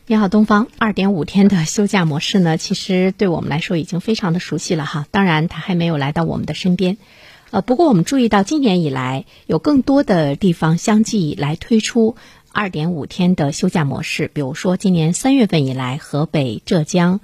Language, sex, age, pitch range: Chinese, female, 50-69, 155-210 Hz